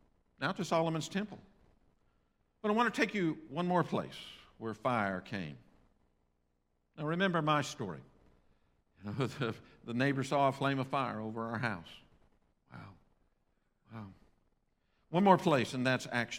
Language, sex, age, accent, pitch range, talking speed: English, male, 60-79, American, 125-165 Hz, 150 wpm